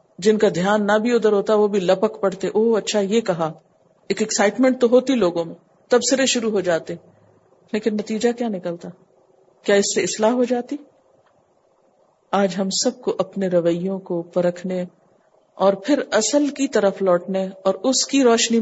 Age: 50-69